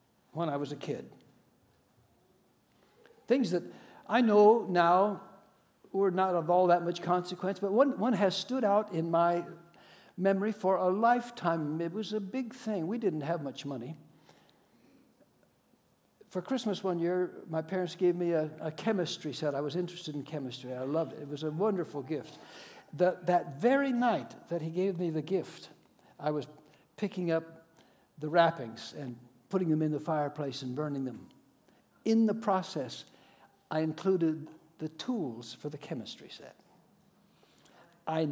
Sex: male